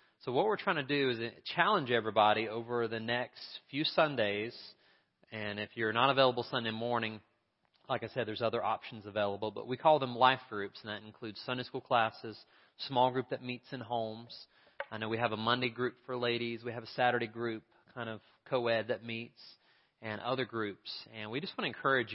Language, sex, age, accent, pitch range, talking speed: English, male, 30-49, American, 105-125 Hz, 200 wpm